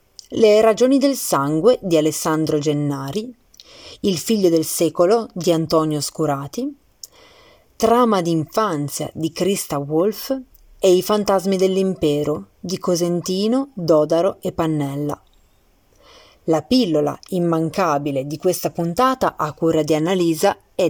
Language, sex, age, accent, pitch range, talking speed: Italian, female, 30-49, native, 155-210 Hz, 110 wpm